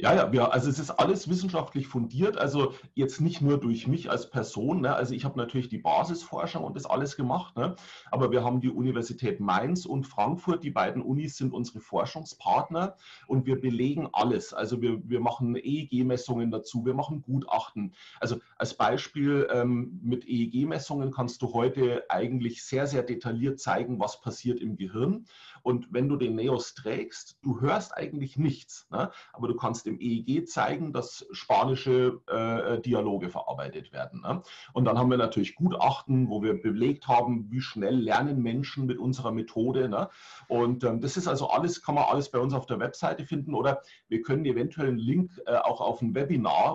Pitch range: 120-140 Hz